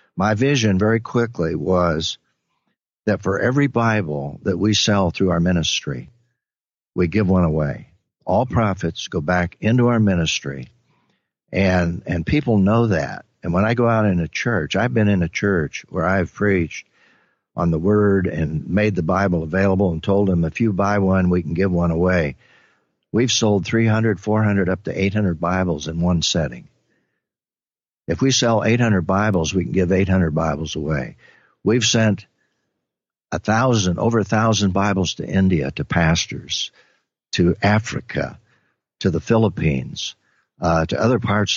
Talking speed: 160 wpm